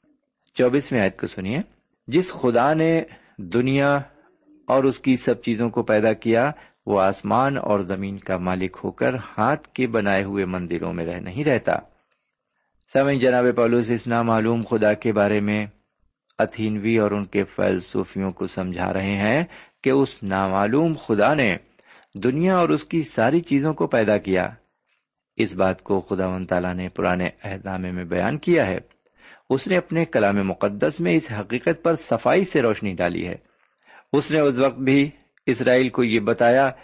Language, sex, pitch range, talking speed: Urdu, male, 100-135 Hz, 165 wpm